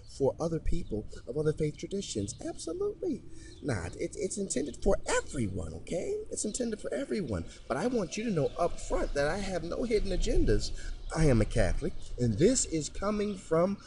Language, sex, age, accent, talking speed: English, male, 30-49, American, 175 wpm